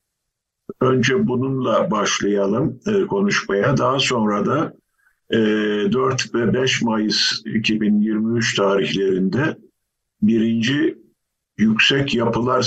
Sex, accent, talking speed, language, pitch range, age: male, native, 75 wpm, Turkish, 110-135 Hz, 50-69